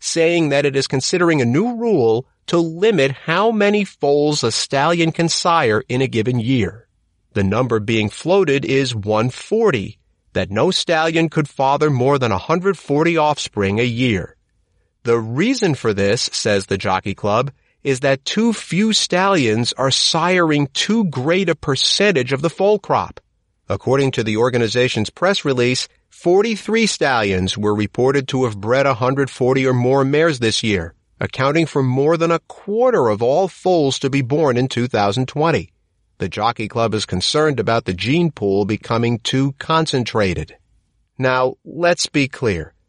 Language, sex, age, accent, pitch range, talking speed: English, male, 40-59, American, 110-165 Hz, 155 wpm